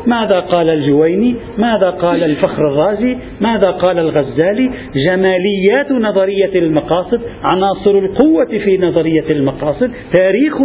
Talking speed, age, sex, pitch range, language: 105 wpm, 50-69, male, 165-220 Hz, Arabic